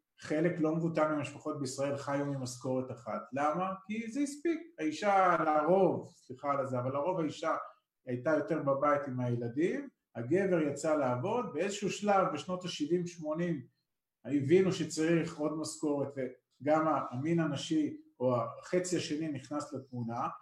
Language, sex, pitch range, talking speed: Hebrew, male, 130-160 Hz, 130 wpm